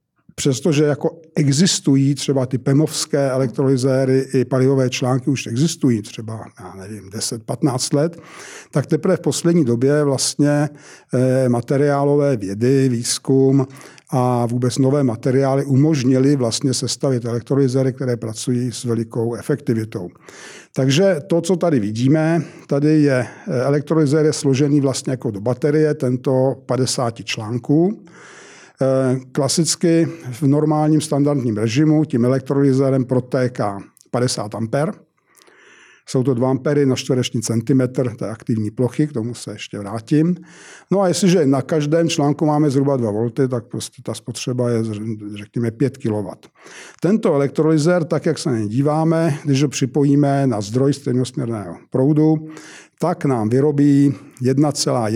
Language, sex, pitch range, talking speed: Czech, male, 125-150 Hz, 125 wpm